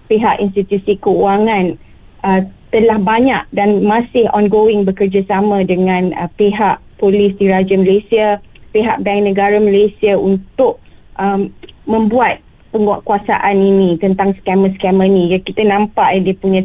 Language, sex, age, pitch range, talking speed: Malay, female, 20-39, 195-225 Hz, 125 wpm